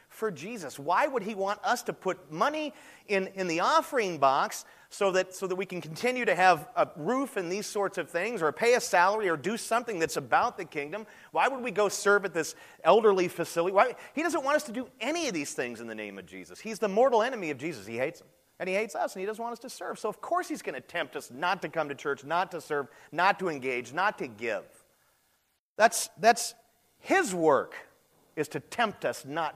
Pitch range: 145-225 Hz